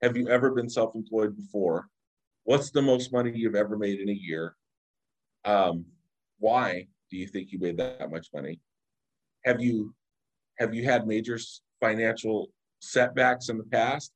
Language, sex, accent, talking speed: English, male, American, 155 wpm